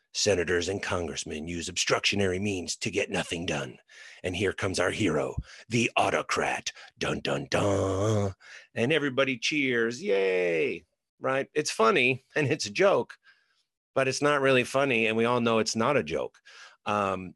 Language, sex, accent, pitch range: English, male, American, 110-145 Hz